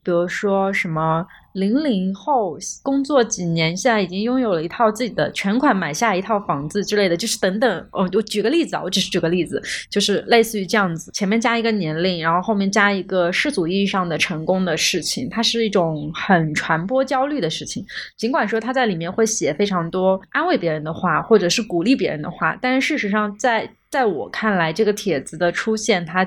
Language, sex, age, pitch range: Chinese, female, 20-39, 175-225 Hz